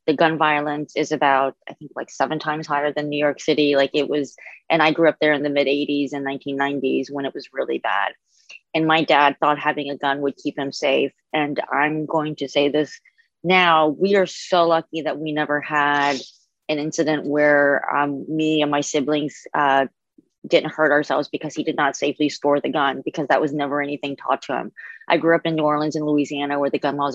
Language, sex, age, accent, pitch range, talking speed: English, female, 30-49, American, 145-155 Hz, 220 wpm